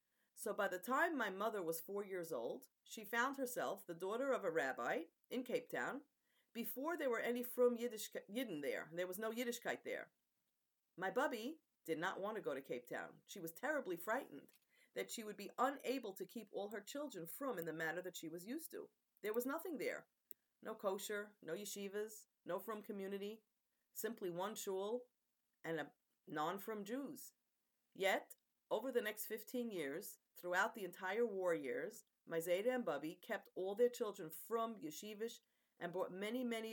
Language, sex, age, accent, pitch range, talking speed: English, female, 40-59, American, 185-245 Hz, 180 wpm